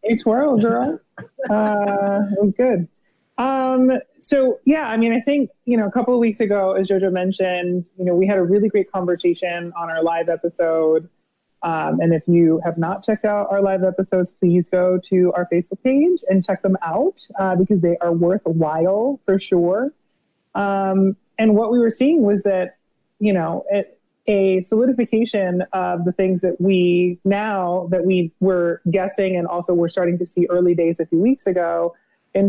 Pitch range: 175-210 Hz